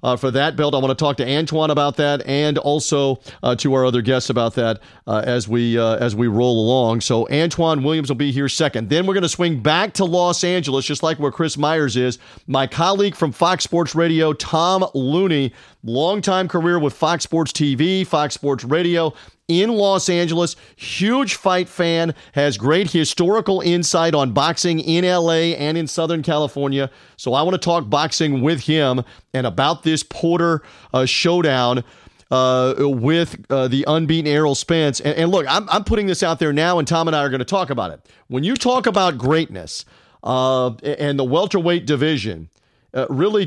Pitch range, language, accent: 135-170 Hz, English, American